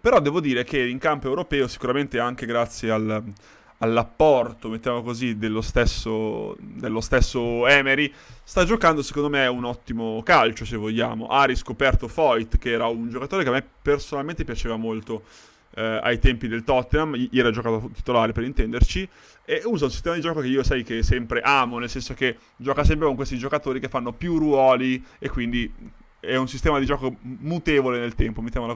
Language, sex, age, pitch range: Italian, male, 20-39, 115-135 Hz